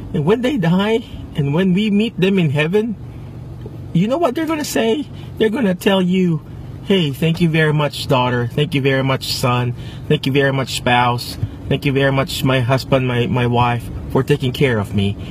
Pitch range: 120-175 Hz